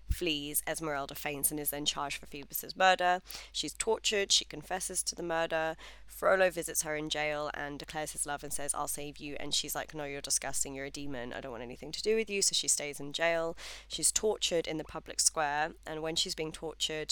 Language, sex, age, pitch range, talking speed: English, female, 20-39, 150-165 Hz, 225 wpm